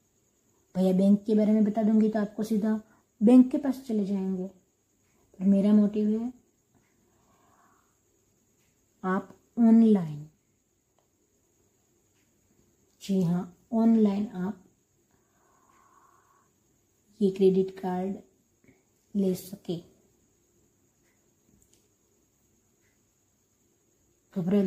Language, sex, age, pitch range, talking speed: Hindi, female, 20-39, 195-220 Hz, 75 wpm